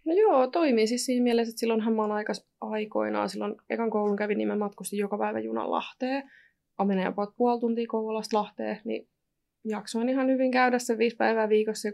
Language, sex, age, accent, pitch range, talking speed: Finnish, female, 20-39, native, 195-225 Hz, 190 wpm